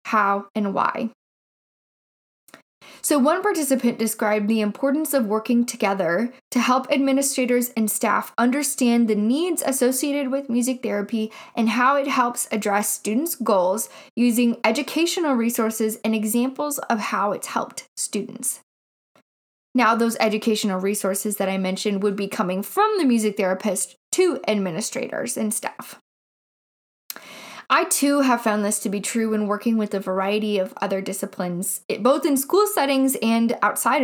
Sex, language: female, English